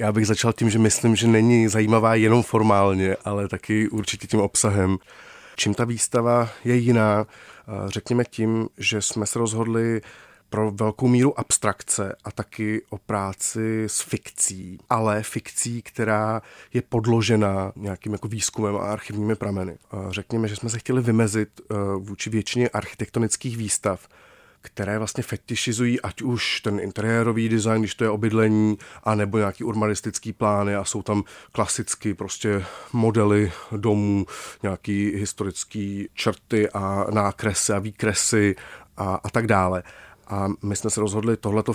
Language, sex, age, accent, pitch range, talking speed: Czech, male, 30-49, native, 100-115 Hz, 140 wpm